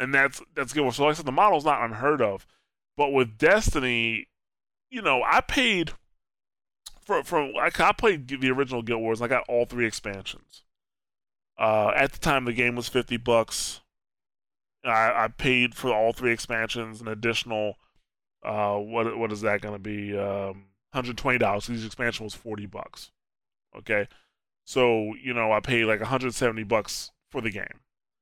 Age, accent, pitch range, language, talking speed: 20-39, American, 110-135 Hz, English, 175 wpm